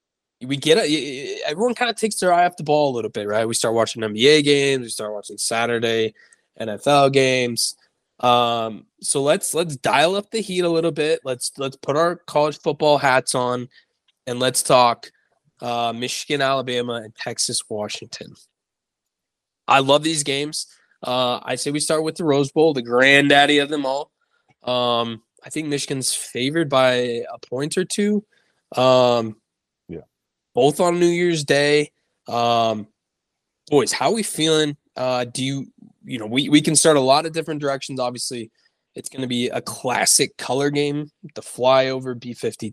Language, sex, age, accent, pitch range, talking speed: English, male, 20-39, American, 115-150 Hz, 170 wpm